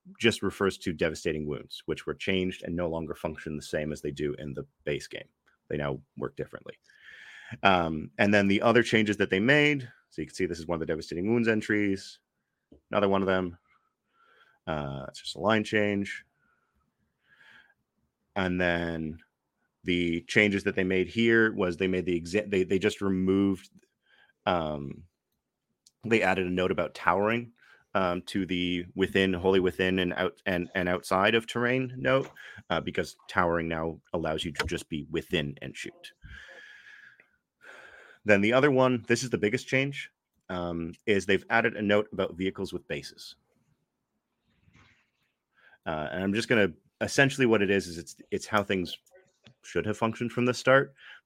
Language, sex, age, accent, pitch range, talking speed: English, male, 30-49, American, 85-115 Hz, 170 wpm